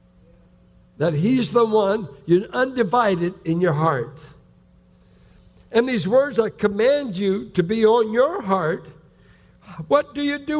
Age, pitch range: 60-79, 190-265 Hz